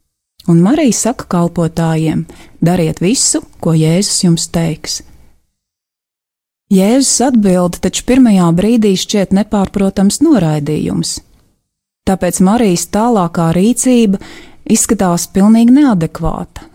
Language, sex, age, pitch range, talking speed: English, female, 30-49, 170-215 Hz, 95 wpm